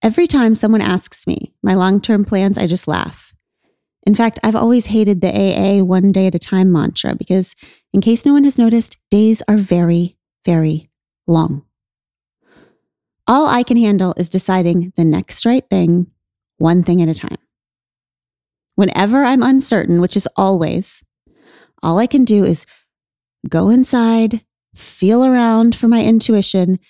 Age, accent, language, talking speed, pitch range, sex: 30-49, American, English, 155 wpm, 180-230 Hz, female